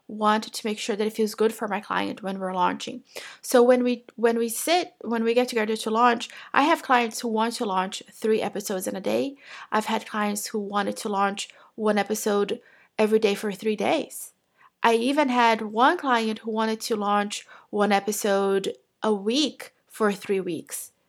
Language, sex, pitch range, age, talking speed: English, female, 210-245 Hz, 30-49, 195 wpm